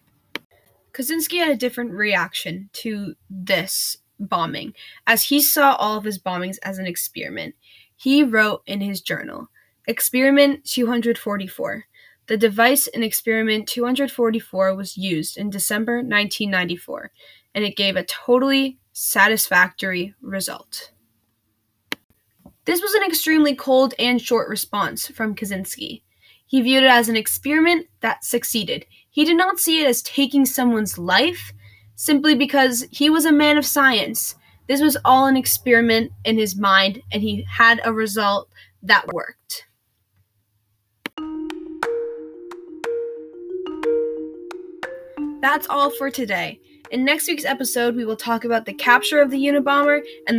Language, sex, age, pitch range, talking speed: English, female, 10-29, 200-285 Hz, 130 wpm